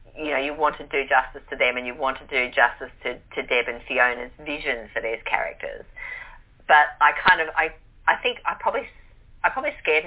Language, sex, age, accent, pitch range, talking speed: English, female, 40-59, Australian, 125-160 Hz, 215 wpm